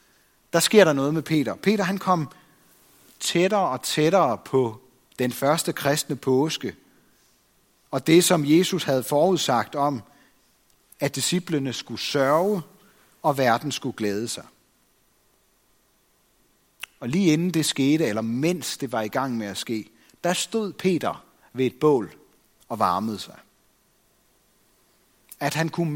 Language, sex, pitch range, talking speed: Danish, male, 130-170 Hz, 135 wpm